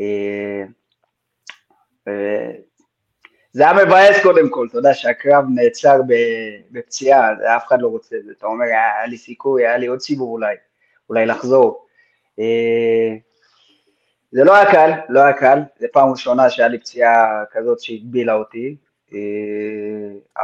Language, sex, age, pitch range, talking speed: Hebrew, male, 20-39, 115-150 Hz, 140 wpm